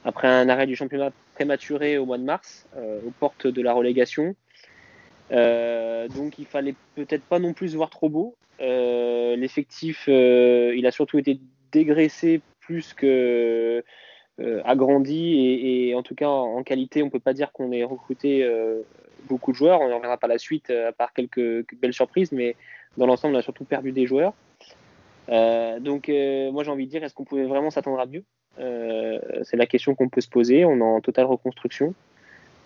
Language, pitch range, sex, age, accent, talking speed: French, 120-140 Hz, male, 20-39, French, 200 wpm